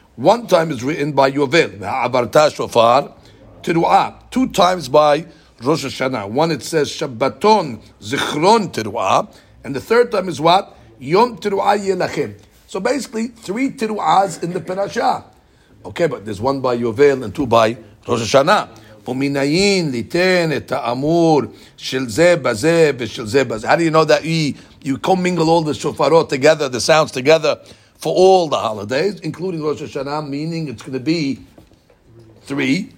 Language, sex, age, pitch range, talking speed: English, male, 50-69, 130-175 Hz, 145 wpm